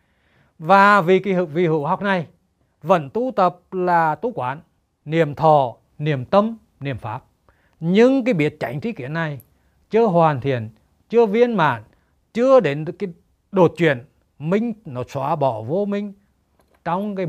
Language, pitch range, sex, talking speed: Vietnamese, 125-175 Hz, male, 155 wpm